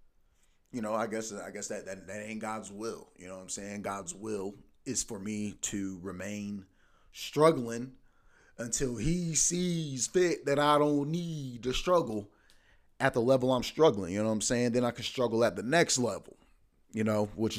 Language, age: English, 30-49